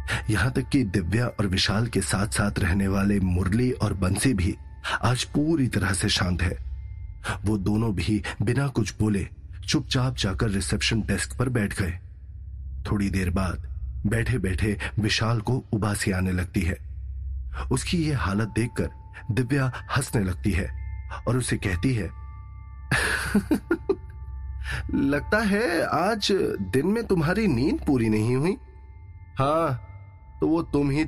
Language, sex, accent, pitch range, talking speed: Hindi, male, native, 90-125 Hz, 135 wpm